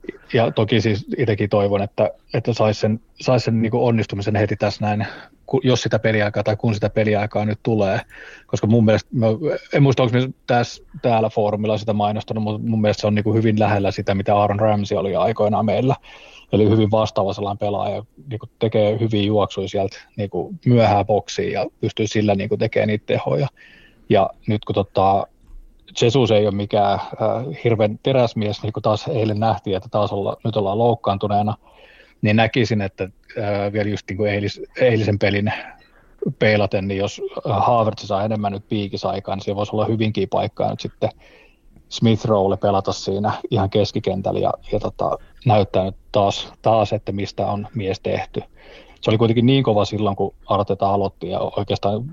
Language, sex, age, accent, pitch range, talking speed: Finnish, male, 30-49, native, 100-110 Hz, 170 wpm